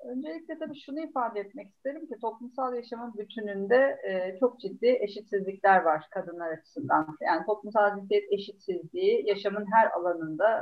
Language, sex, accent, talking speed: Turkish, female, native, 130 wpm